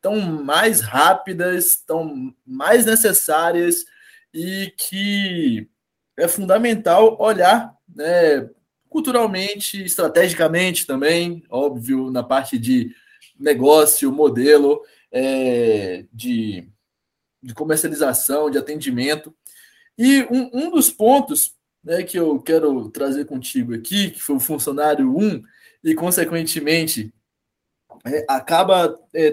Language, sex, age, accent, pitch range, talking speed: Portuguese, male, 20-39, Brazilian, 150-225 Hz, 100 wpm